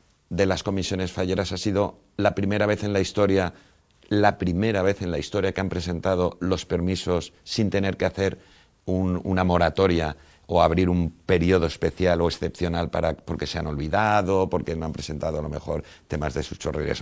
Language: Spanish